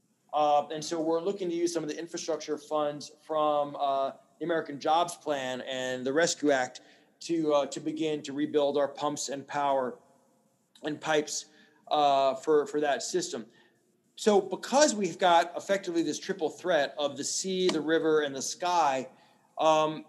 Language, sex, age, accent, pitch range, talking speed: English, male, 30-49, American, 145-175 Hz, 165 wpm